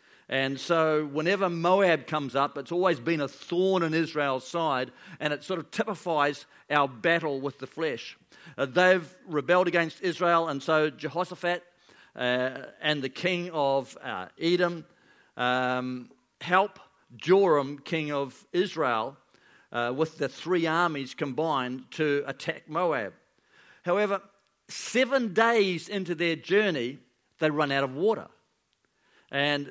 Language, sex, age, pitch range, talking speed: English, male, 50-69, 140-190 Hz, 135 wpm